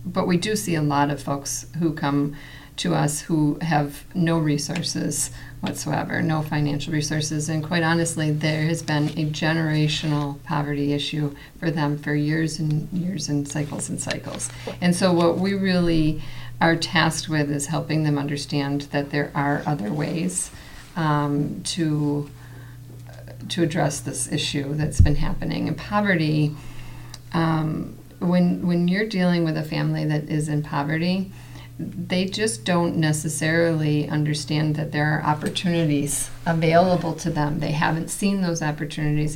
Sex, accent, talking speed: female, American, 145 wpm